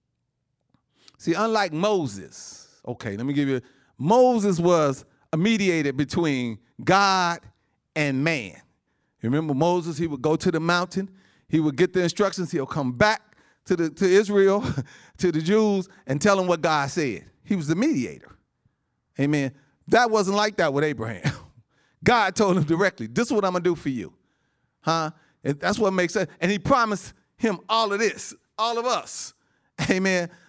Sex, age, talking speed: male, 40-59, 170 wpm